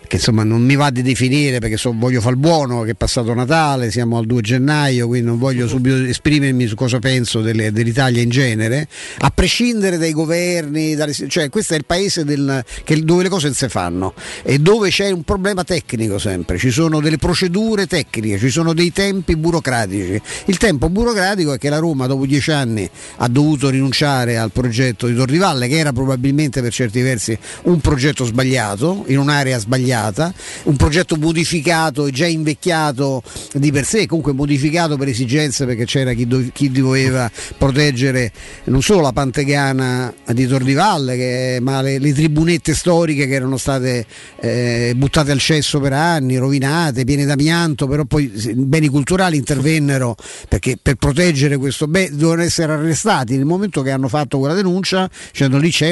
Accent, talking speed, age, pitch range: native, 175 wpm, 50-69, 125-160 Hz